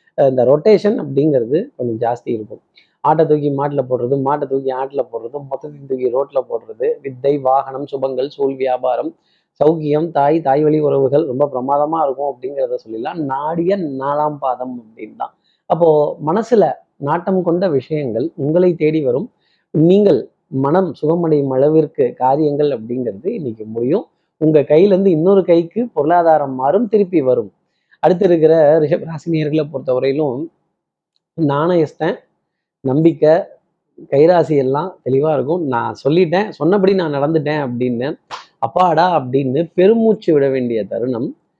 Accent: native